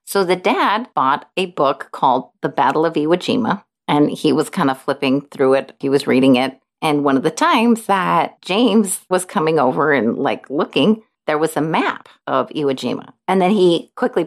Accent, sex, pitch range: American, female, 145-190 Hz